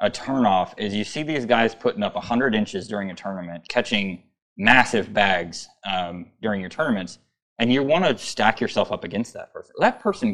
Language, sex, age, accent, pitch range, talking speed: English, male, 20-39, American, 90-115 Hz, 195 wpm